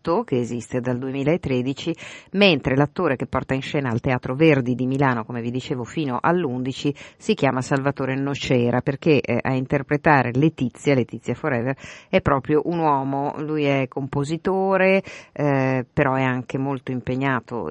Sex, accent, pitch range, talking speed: female, native, 130-155 Hz, 150 wpm